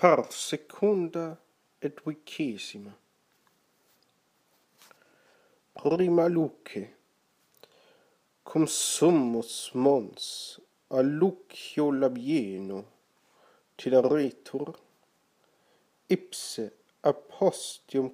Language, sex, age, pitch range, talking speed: English, male, 50-69, 125-175 Hz, 55 wpm